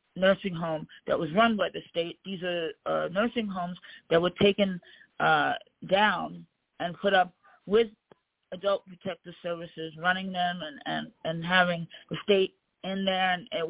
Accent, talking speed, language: American, 160 wpm, English